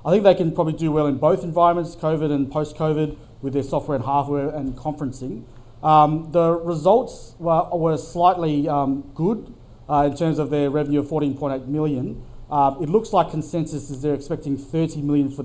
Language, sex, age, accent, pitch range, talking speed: English, male, 30-49, Australian, 135-160 Hz, 185 wpm